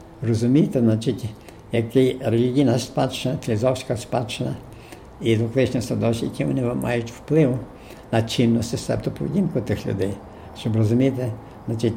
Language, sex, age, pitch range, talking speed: Ukrainian, male, 70-89, 105-120 Hz, 110 wpm